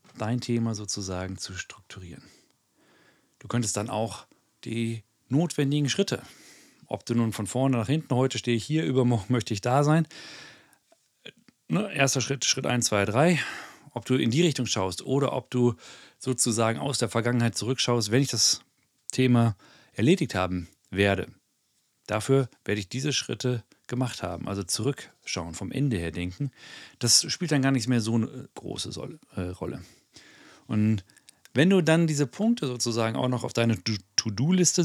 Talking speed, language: 155 wpm, German